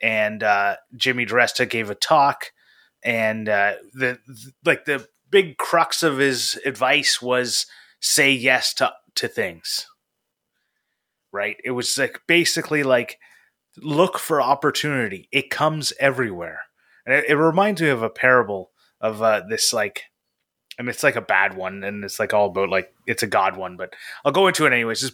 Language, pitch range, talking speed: English, 115-140 Hz, 175 wpm